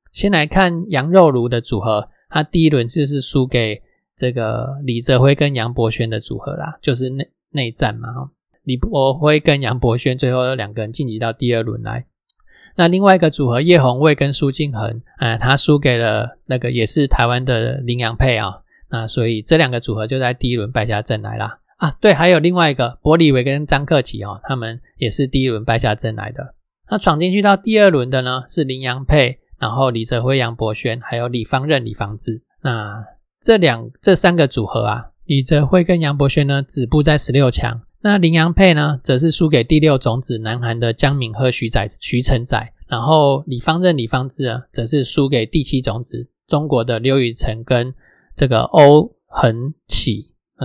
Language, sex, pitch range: Chinese, male, 120-150 Hz